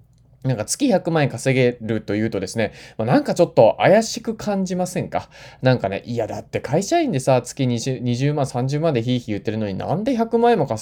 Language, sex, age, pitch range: Japanese, male, 20-39, 120-175 Hz